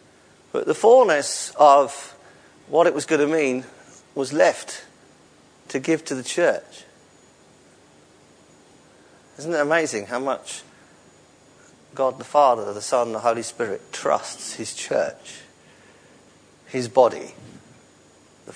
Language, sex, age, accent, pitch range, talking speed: English, male, 40-59, British, 125-150 Hz, 115 wpm